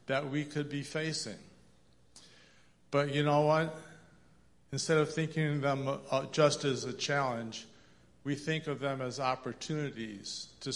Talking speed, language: 140 wpm, English